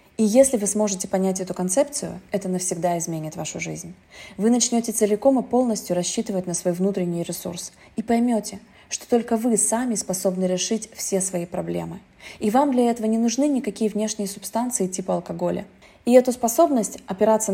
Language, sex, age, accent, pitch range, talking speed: Russian, female, 20-39, native, 175-225 Hz, 165 wpm